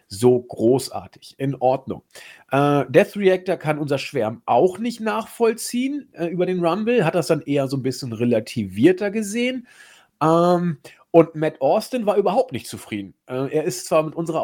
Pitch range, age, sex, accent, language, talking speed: 125-175 Hz, 40-59, male, German, German, 165 wpm